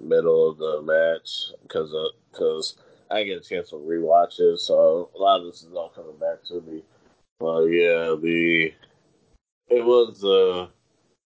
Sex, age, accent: male, 30-49, American